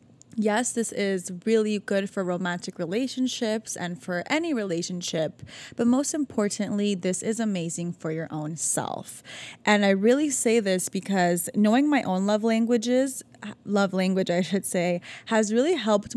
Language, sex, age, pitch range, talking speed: English, female, 20-39, 185-235 Hz, 150 wpm